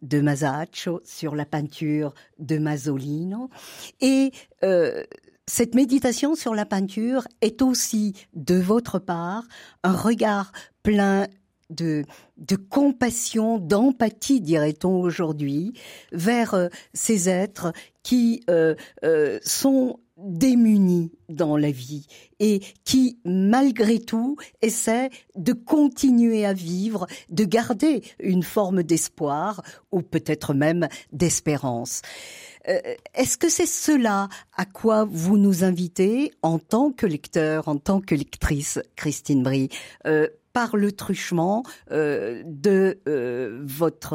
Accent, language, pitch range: French, French, 160-235 Hz